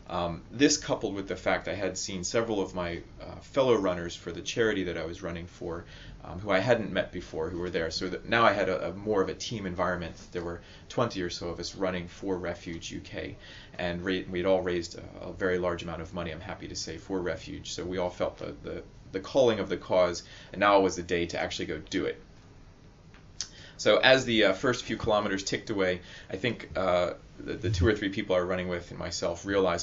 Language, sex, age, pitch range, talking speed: English, male, 30-49, 90-100 Hz, 235 wpm